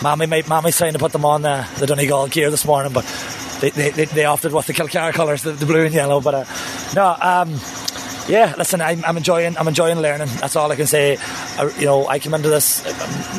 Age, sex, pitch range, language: 30-49, male, 150-175 Hz, English